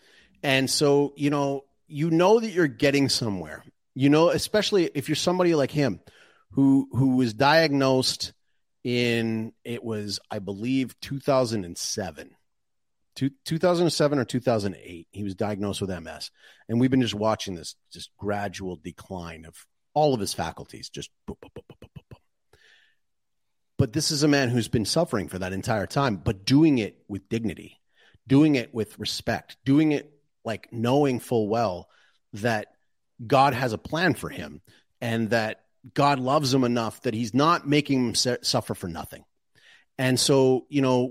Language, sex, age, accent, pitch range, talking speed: English, male, 30-49, American, 110-145 Hz, 160 wpm